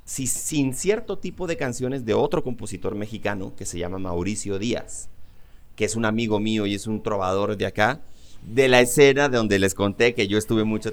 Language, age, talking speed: English, 30-49, 205 wpm